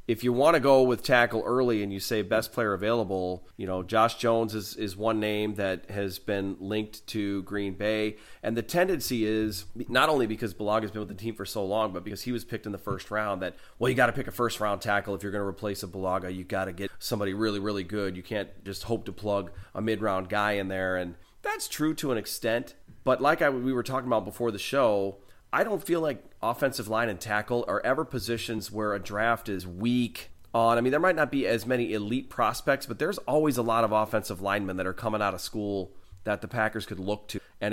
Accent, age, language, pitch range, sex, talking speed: American, 30-49, English, 100-115 Hz, male, 245 wpm